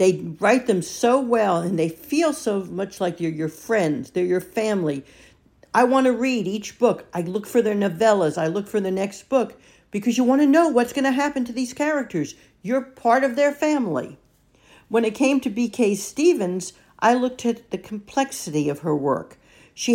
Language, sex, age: English, female, 60-79